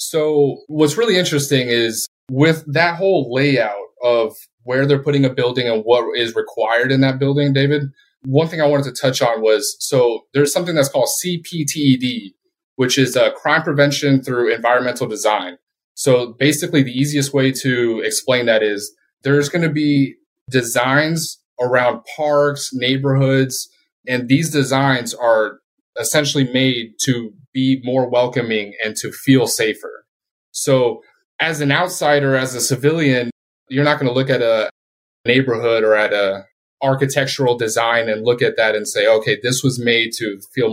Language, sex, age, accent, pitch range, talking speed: English, male, 20-39, American, 120-150 Hz, 160 wpm